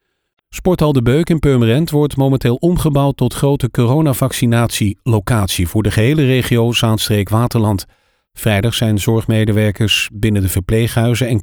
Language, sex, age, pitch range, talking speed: Dutch, male, 40-59, 105-140 Hz, 125 wpm